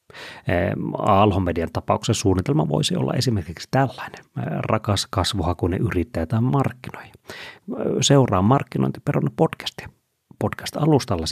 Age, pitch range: 30-49, 90-115 Hz